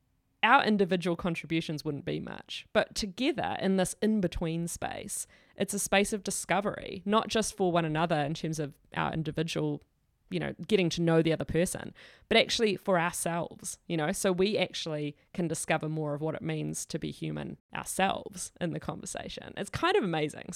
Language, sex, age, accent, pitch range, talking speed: English, female, 20-39, Australian, 165-210 Hz, 180 wpm